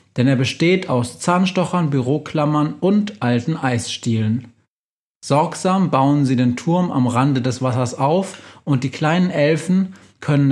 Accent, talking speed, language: German, 135 wpm, German